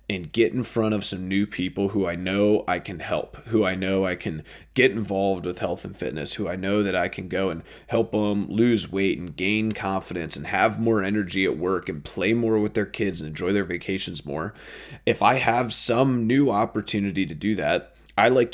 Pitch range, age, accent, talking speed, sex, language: 90-110 Hz, 20-39, American, 220 wpm, male, English